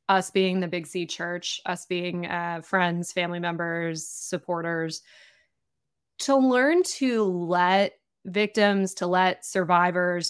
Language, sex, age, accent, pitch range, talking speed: English, female, 20-39, American, 170-190 Hz, 120 wpm